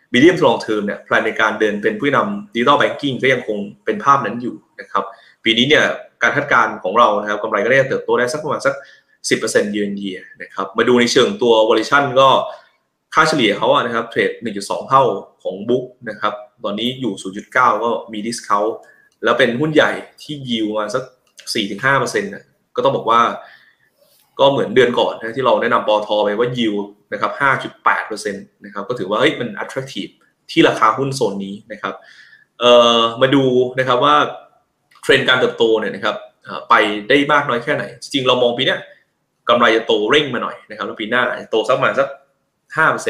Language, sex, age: Thai, male, 20-39